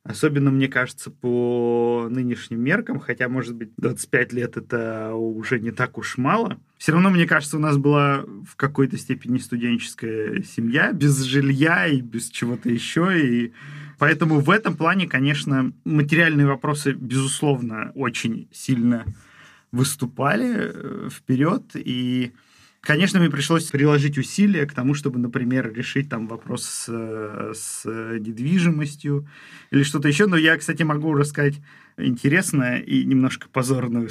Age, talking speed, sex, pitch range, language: 20-39, 130 wpm, male, 125-155 Hz, Russian